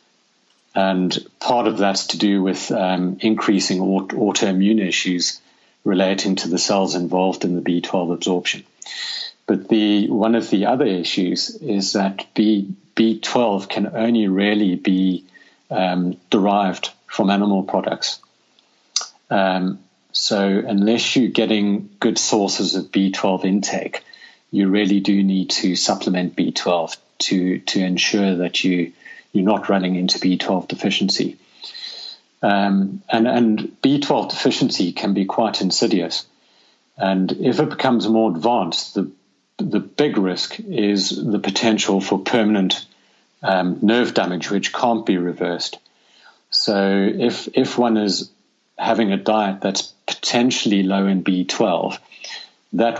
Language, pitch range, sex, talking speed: English, 95-110 Hz, male, 125 wpm